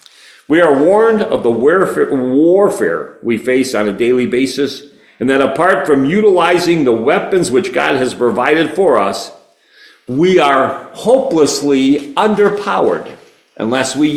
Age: 50-69